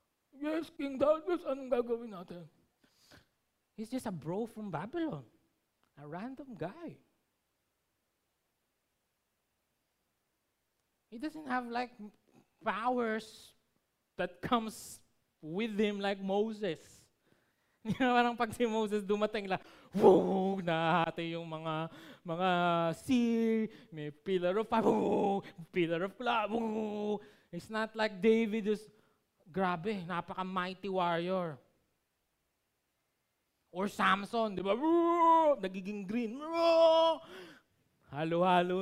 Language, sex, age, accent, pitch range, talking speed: Filipino, male, 20-39, native, 180-235 Hz, 100 wpm